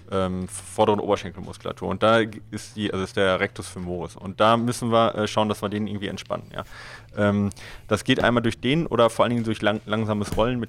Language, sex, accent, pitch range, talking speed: German, male, German, 105-120 Hz, 220 wpm